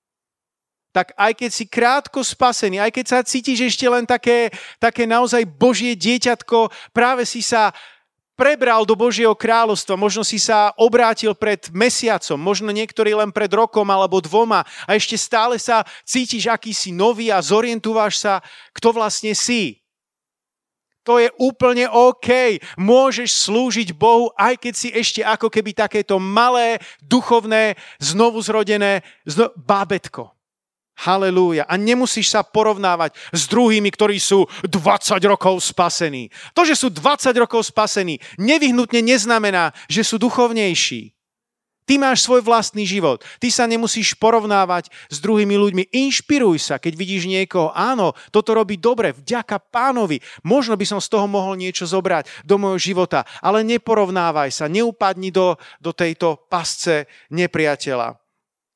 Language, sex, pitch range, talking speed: Slovak, male, 190-235 Hz, 140 wpm